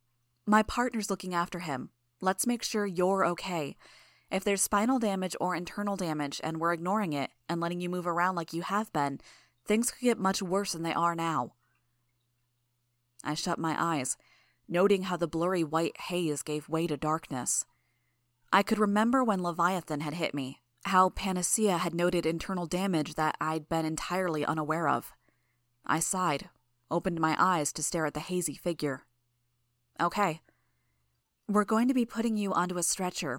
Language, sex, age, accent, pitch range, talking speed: English, female, 30-49, American, 150-195 Hz, 170 wpm